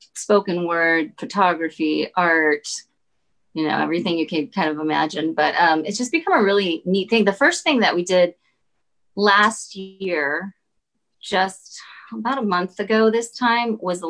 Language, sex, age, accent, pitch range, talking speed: English, female, 30-49, American, 165-220 Hz, 160 wpm